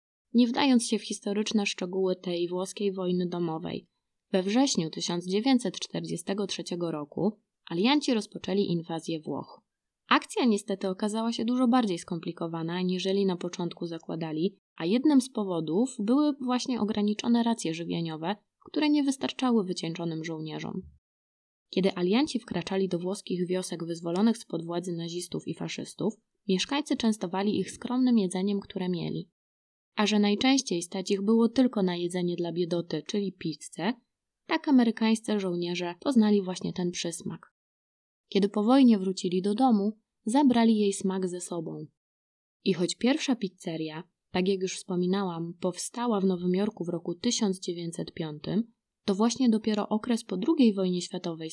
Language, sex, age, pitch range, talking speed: Polish, female, 20-39, 175-220 Hz, 135 wpm